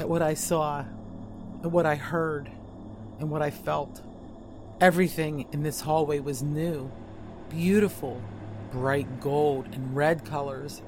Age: 30-49